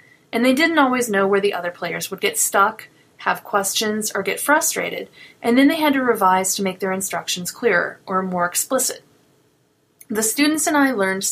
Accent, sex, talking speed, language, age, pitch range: American, female, 190 wpm, English, 30-49, 185-250 Hz